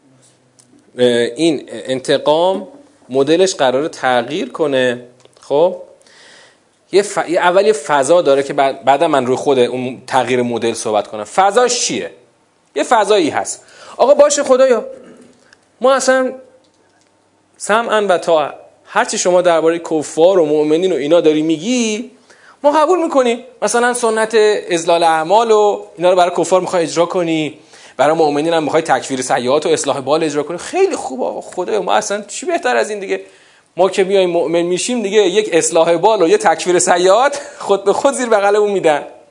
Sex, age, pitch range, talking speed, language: male, 30-49, 140-235 Hz, 155 wpm, Persian